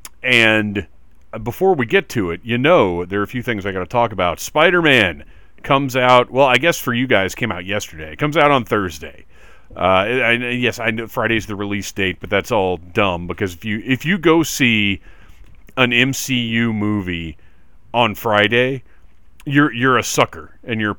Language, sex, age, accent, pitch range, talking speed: English, male, 40-59, American, 95-140 Hz, 190 wpm